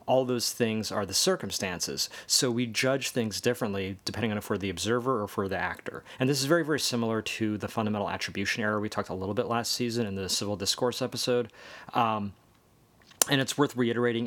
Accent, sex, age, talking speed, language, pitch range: American, male, 30-49, 205 wpm, English, 100-120 Hz